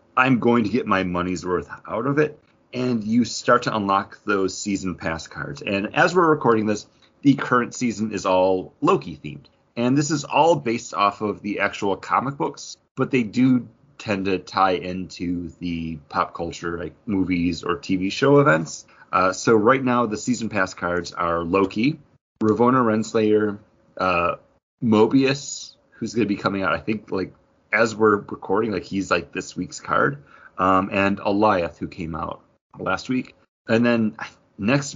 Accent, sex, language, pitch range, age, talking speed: American, male, English, 90-125 Hz, 30-49, 175 wpm